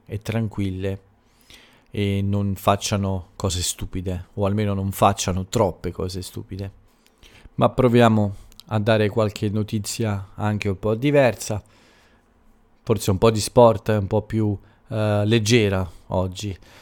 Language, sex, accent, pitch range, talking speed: Italian, male, native, 95-115 Hz, 120 wpm